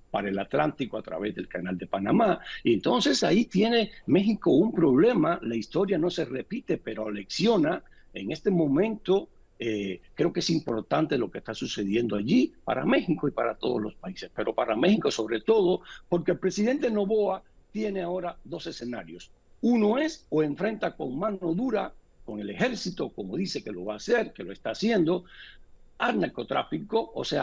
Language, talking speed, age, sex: Spanish, 175 wpm, 60-79, male